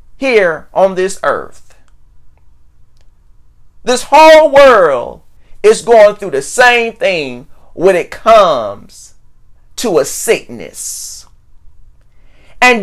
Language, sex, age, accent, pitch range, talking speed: English, male, 40-59, American, 195-290 Hz, 95 wpm